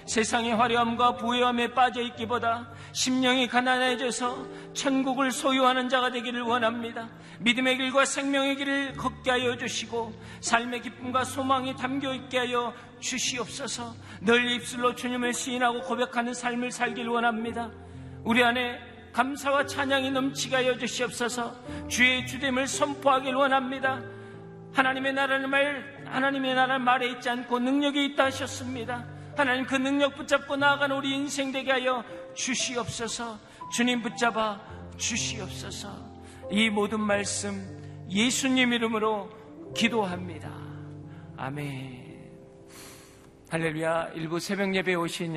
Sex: male